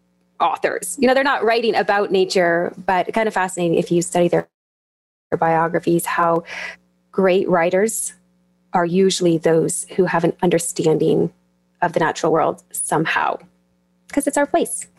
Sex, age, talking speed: female, 20-39, 150 wpm